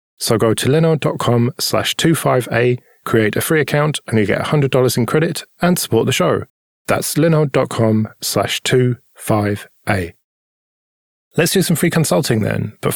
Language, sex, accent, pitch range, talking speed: English, male, British, 105-140 Hz, 145 wpm